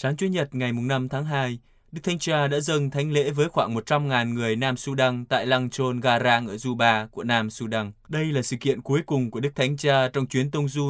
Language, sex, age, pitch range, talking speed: Vietnamese, male, 20-39, 115-145 Hz, 230 wpm